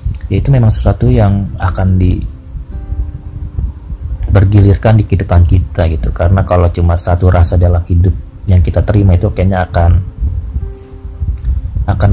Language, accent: Indonesian, native